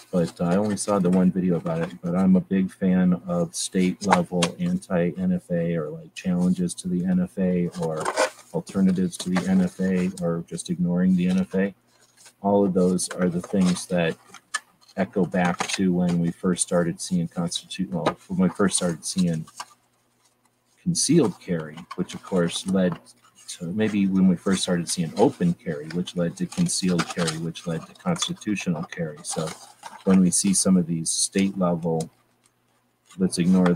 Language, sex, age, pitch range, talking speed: English, male, 40-59, 90-125 Hz, 160 wpm